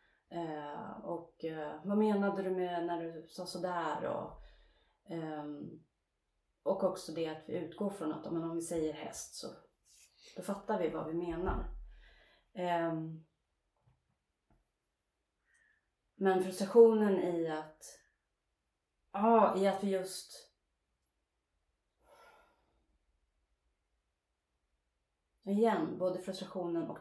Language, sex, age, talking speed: Swedish, female, 30-49, 105 wpm